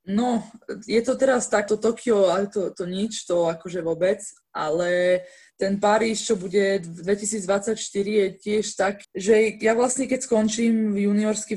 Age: 20-39